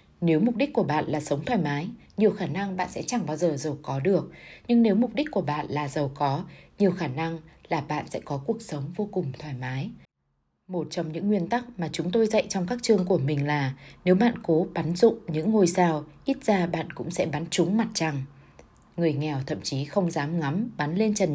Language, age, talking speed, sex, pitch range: Vietnamese, 20-39, 235 wpm, female, 150-205 Hz